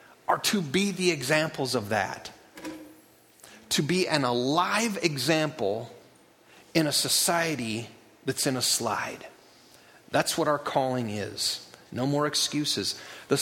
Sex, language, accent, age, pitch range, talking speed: male, English, American, 40-59, 125-170 Hz, 125 wpm